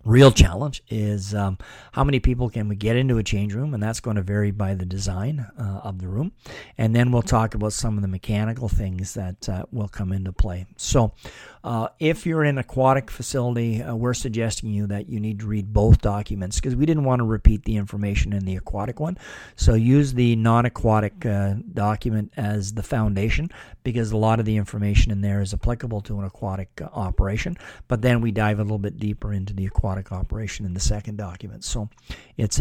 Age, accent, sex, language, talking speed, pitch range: 40-59, American, male, English, 205 wpm, 100-120 Hz